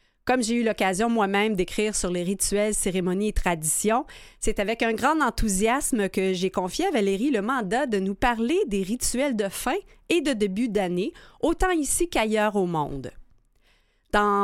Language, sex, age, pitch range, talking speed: French, female, 30-49, 195-250 Hz, 170 wpm